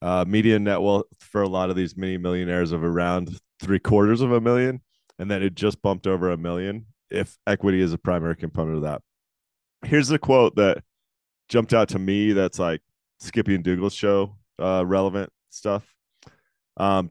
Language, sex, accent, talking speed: English, male, American, 180 wpm